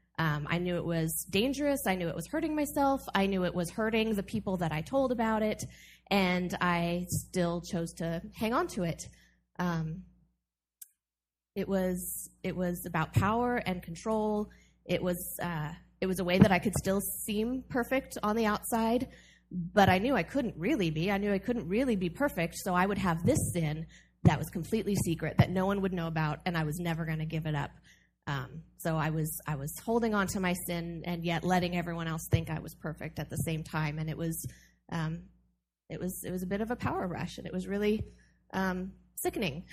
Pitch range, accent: 160-200 Hz, American